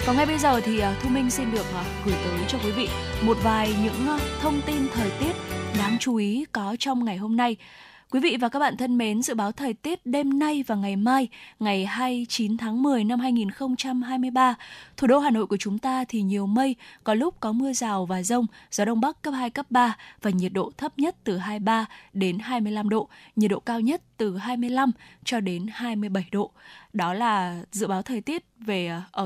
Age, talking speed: 10-29, 215 wpm